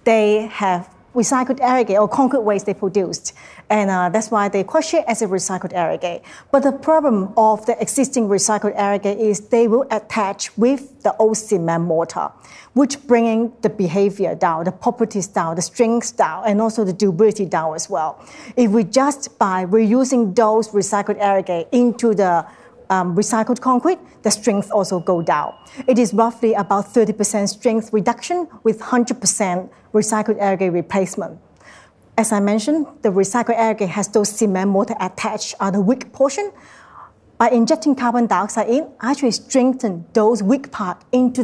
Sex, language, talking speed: female, English, 160 wpm